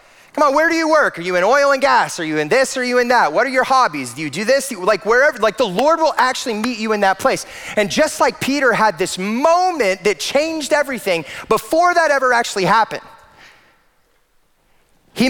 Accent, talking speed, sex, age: American, 220 wpm, male, 30-49